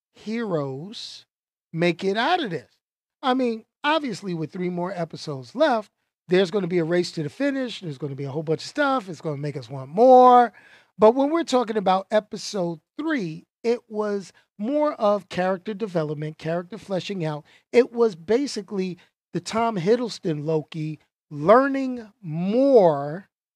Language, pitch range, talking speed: English, 160-220 Hz, 165 wpm